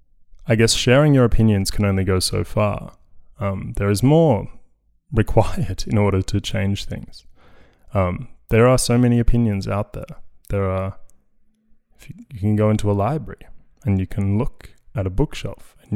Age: 20-39